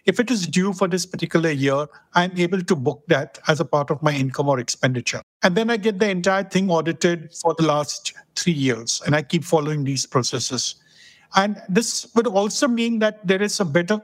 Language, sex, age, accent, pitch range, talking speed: English, male, 50-69, Indian, 155-195 Hz, 215 wpm